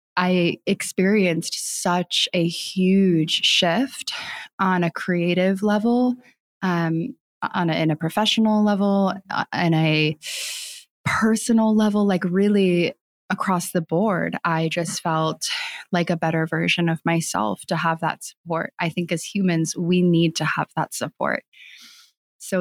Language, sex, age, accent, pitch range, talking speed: English, female, 20-39, American, 170-200 Hz, 135 wpm